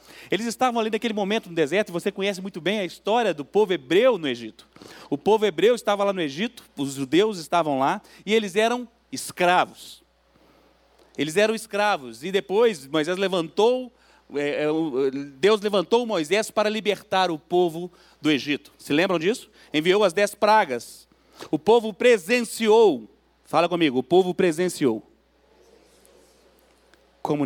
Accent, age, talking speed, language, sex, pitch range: Brazilian, 40-59, 145 wpm, Portuguese, male, 160-220 Hz